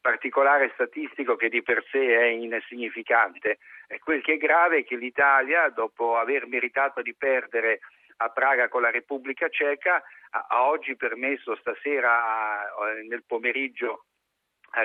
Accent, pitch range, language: native, 115-135 Hz, Italian